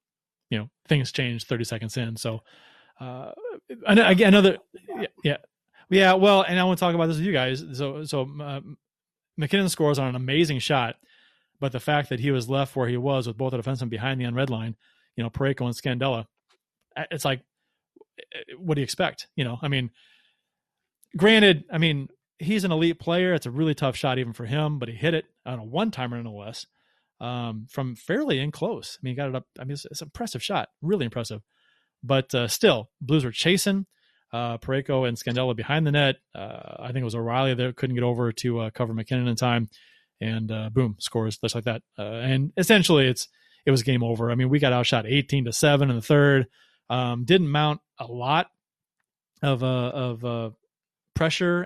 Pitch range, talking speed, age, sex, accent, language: 120-160 Hz, 205 wpm, 30-49, male, American, English